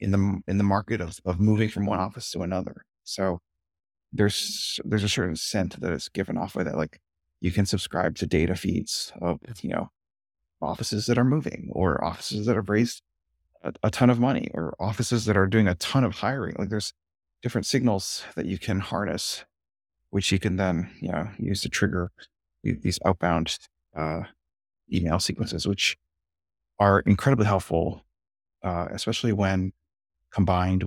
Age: 30-49